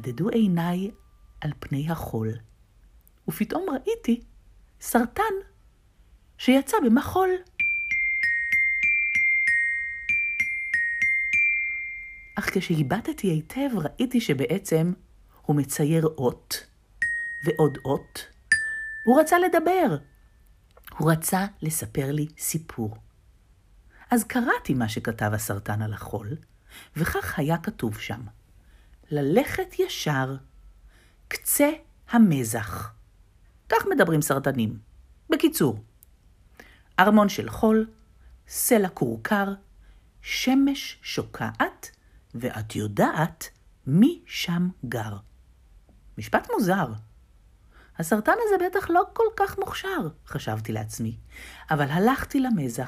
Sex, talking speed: female, 85 wpm